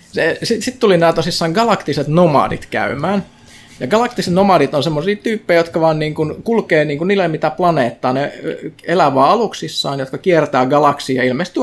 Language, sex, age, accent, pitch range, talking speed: Finnish, male, 20-39, native, 135-200 Hz, 155 wpm